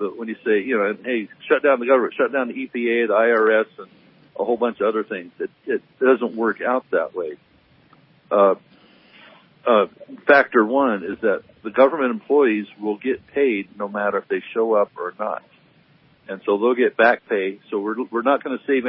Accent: American